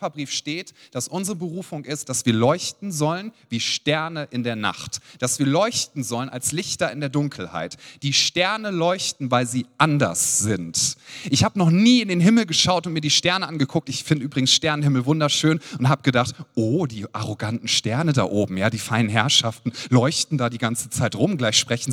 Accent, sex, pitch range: German, male, 130-170 Hz